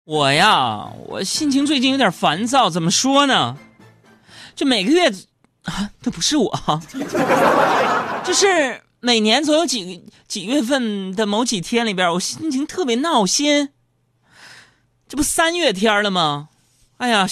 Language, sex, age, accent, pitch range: Chinese, male, 30-49, native, 175-280 Hz